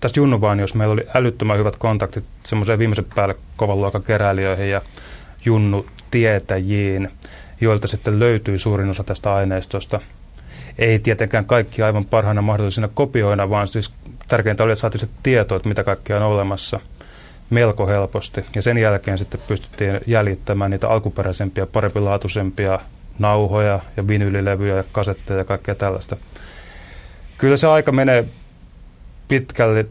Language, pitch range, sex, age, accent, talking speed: Finnish, 100-110 Hz, male, 20-39, native, 130 wpm